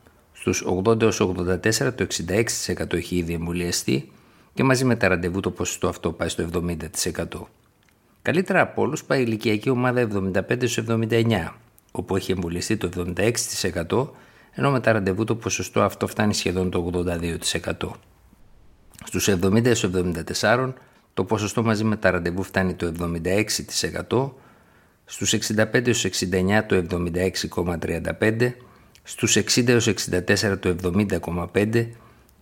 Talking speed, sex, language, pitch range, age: 115 wpm, male, Greek, 85-110 Hz, 50-69